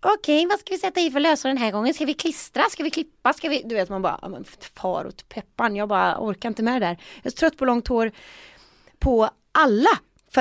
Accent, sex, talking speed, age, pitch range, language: native, female, 250 wpm, 30-49, 210-290 Hz, Swedish